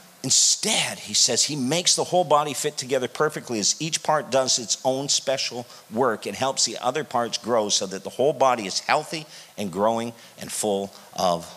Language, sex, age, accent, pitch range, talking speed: English, male, 50-69, American, 135-180 Hz, 190 wpm